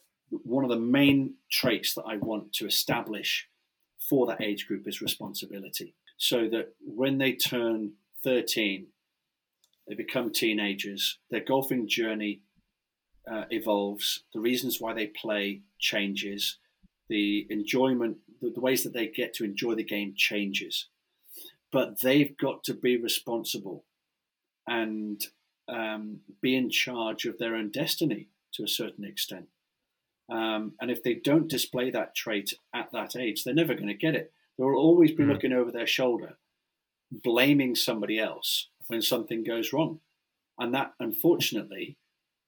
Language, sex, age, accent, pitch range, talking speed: English, male, 30-49, British, 105-135 Hz, 145 wpm